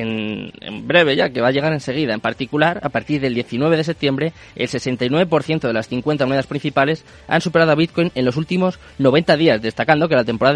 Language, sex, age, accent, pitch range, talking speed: Spanish, male, 20-39, Spanish, 125-155 Hz, 205 wpm